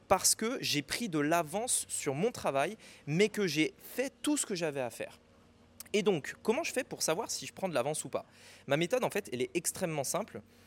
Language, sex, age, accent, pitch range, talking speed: French, male, 20-39, French, 130-185 Hz, 230 wpm